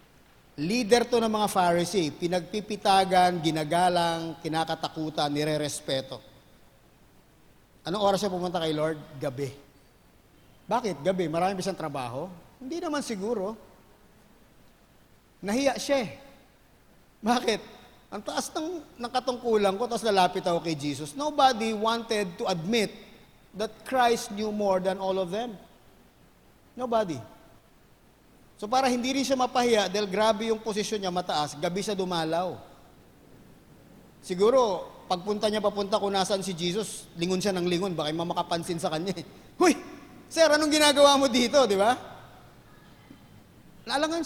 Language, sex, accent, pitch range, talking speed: English, male, Filipino, 165-225 Hz, 120 wpm